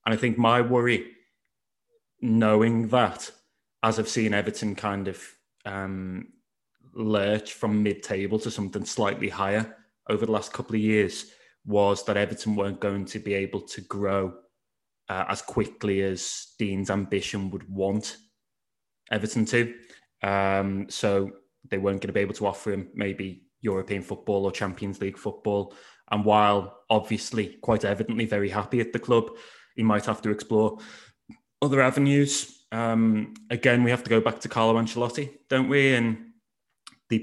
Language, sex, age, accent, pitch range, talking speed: English, male, 20-39, British, 100-115 Hz, 155 wpm